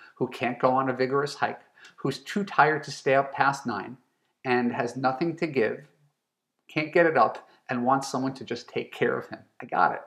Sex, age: male, 40-59